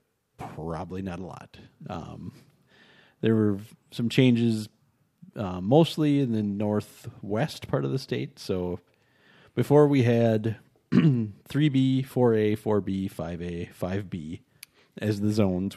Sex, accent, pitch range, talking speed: male, American, 95-130 Hz, 115 wpm